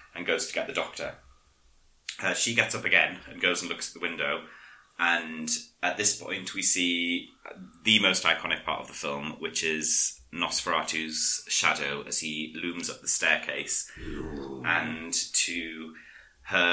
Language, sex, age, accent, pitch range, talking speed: English, male, 30-49, British, 80-90 Hz, 160 wpm